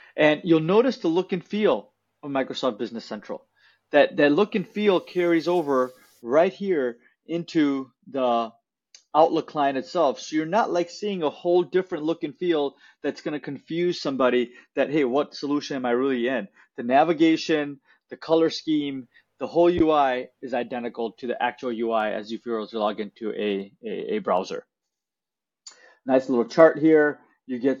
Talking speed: 170 wpm